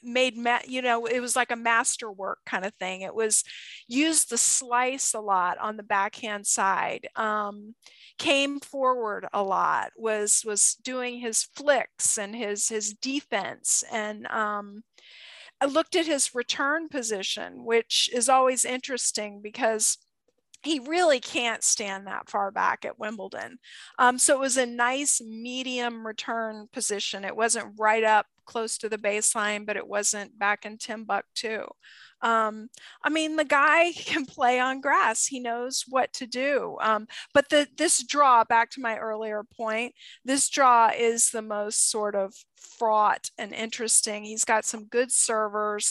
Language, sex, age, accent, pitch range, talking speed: English, female, 40-59, American, 215-255 Hz, 155 wpm